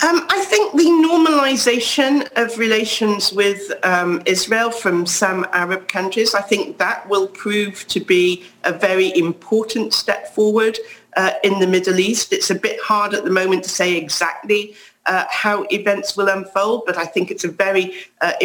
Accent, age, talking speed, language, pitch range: British, 40-59, 170 wpm, English, 175-215 Hz